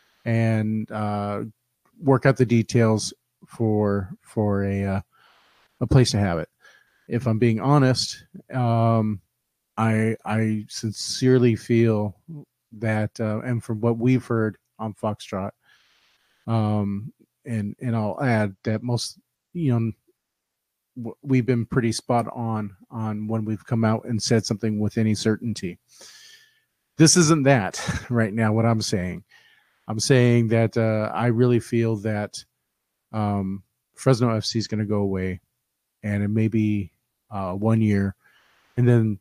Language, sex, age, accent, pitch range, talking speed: English, male, 30-49, American, 105-120 Hz, 140 wpm